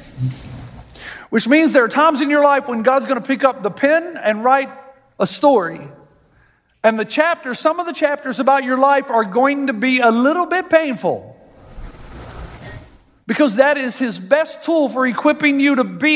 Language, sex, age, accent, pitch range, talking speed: English, male, 50-69, American, 245-300 Hz, 180 wpm